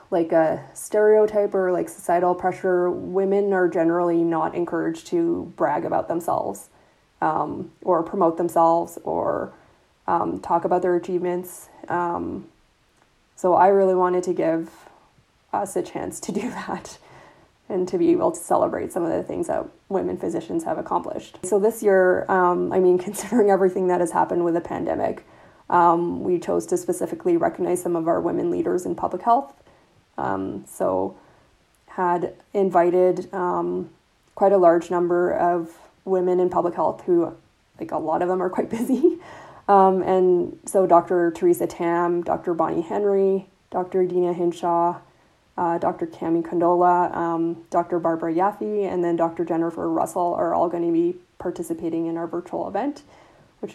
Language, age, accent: English, 20-39, American